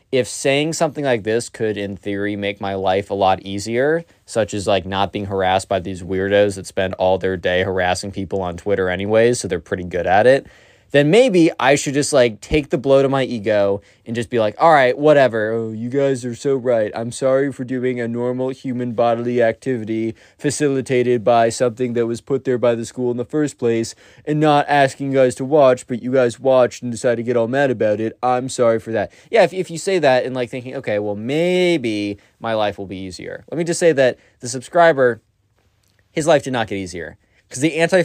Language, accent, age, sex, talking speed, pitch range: English, American, 20-39, male, 225 wpm, 105-150 Hz